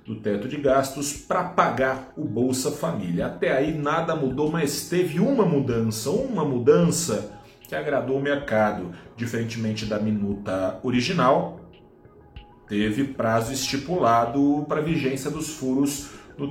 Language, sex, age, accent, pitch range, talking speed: Portuguese, male, 40-59, Brazilian, 110-145 Hz, 125 wpm